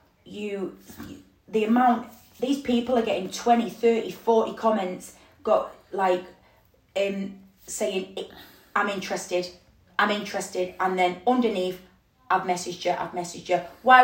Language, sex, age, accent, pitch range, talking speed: English, female, 20-39, British, 180-215 Hz, 125 wpm